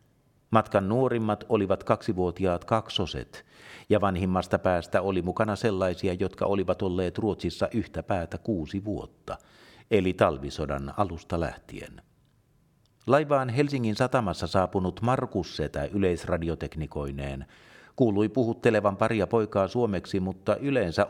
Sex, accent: male, native